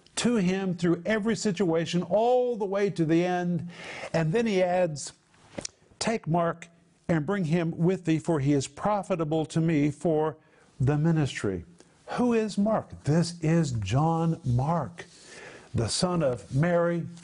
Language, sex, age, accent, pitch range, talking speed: English, male, 50-69, American, 155-180 Hz, 145 wpm